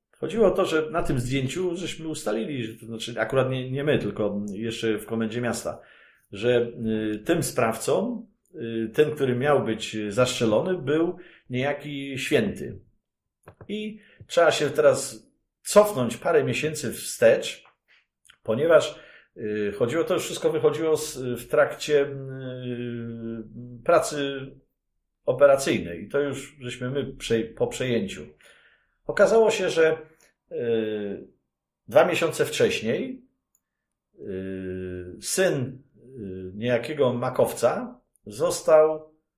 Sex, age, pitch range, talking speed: male, 50-69, 115-155 Hz, 100 wpm